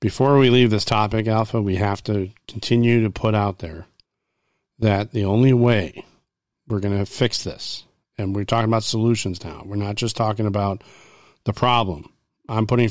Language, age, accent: English, 40-59, American